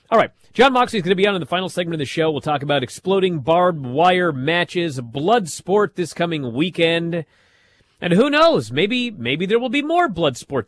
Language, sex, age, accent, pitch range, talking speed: English, male, 40-59, American, 115-170 Hz, 220 wpm